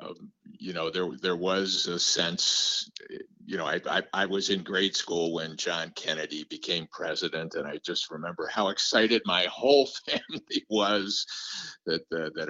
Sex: male